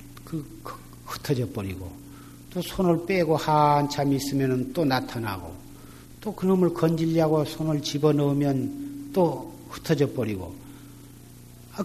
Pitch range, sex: 120-150 Hz, male